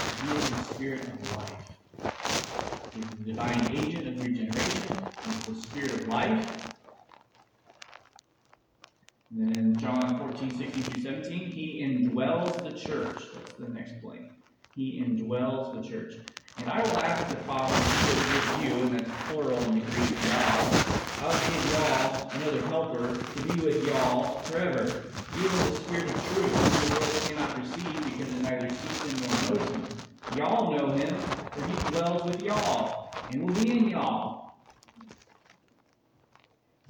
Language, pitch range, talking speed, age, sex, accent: English, 120-155 Hz, 150 wpm, 30-49, male, American